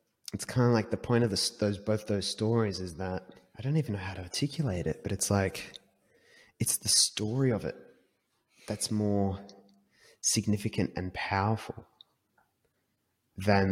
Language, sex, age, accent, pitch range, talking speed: English, male, 30-49, Australian, 95-115 Hz, 155 wpm